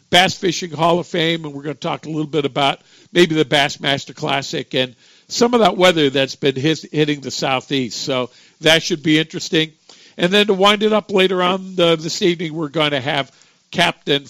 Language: English